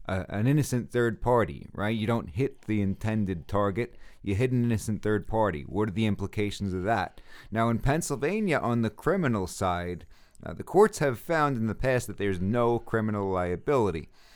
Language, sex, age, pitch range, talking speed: English, male, 30-49, 95-120 Hz, 185 wpm